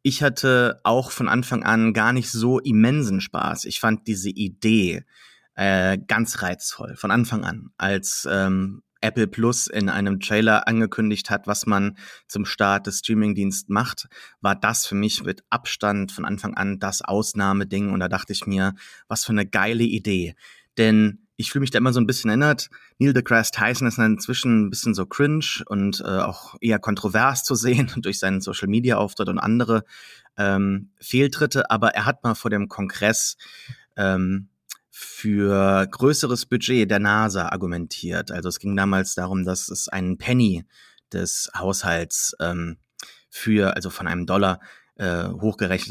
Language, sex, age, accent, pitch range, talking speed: German, male, 30-49, German, 100-120 Hz, 165 wpm